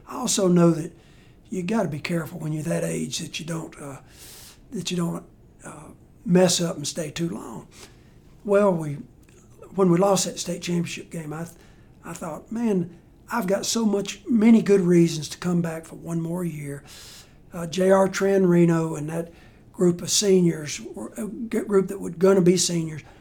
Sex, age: male, 60-79